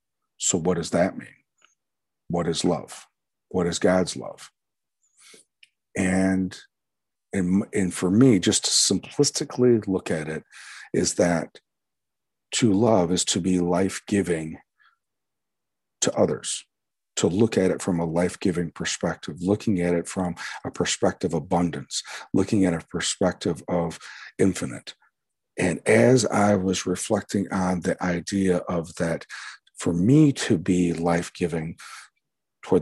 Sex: male